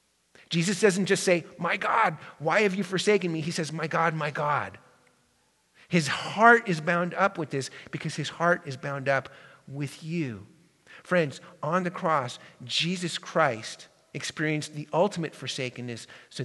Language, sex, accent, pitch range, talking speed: English, male, American, 145-190 Hz, 155 wpm